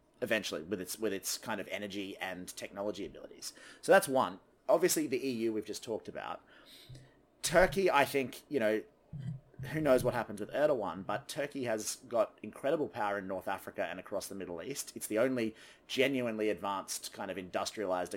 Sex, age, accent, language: male, 30-49, Australian, English